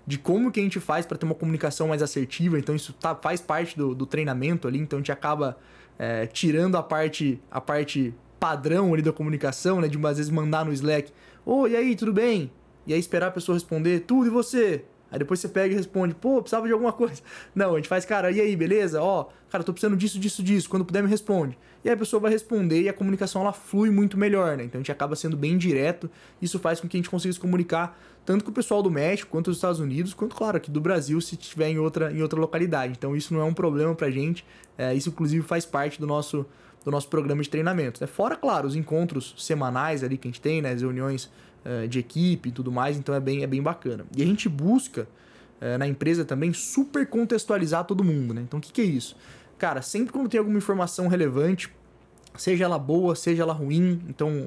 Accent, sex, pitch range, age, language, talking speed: Brazilian, male, 145-190 Hz, 20-39, Portuguese, 240 wpm